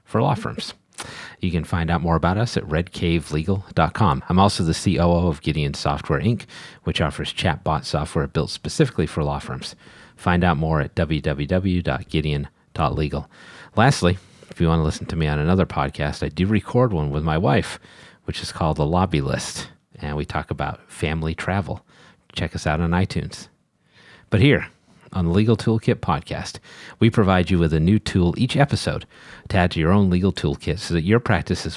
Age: 40-59